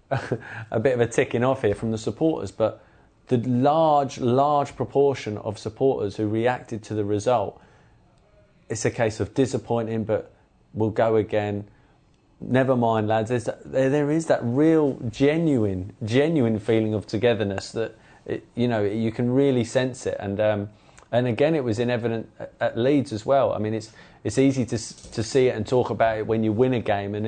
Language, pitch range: English, 110-130 Hz